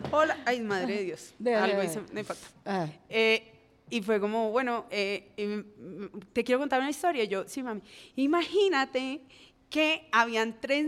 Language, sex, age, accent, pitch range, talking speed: Spanish, female, 30-49, Colombian, 225-290 Hz, 145 wpm